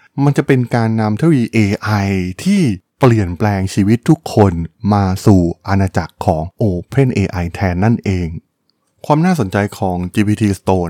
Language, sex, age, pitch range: Thai, male, 20-39, 95-120 Hz